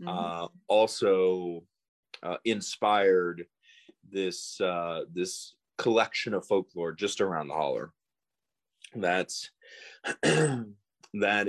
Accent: American